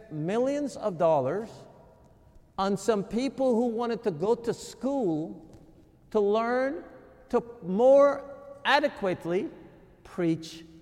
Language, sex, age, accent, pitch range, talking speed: English, male, 50-69, American, 185-280 Hz, 100 wpm